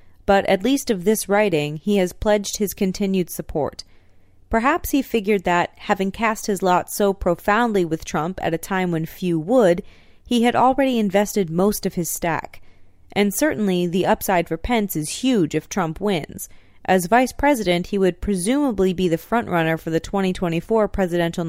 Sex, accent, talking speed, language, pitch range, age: female, American, 175 wpm, English, 165-215 Hz, 30-49